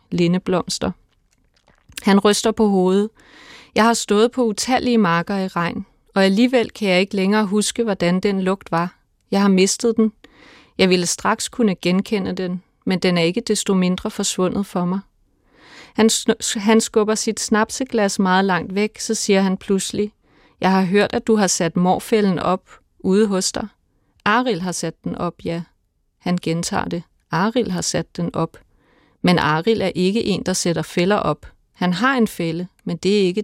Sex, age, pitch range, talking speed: female, 30-49, 180-215 Hz, 180 wpm